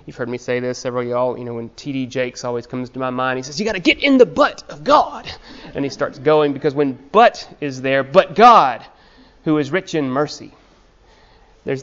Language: English